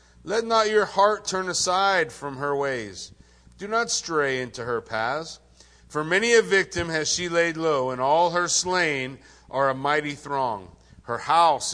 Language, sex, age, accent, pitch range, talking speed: English, male, 50-69, American, 120-175 Hz, 170 wpm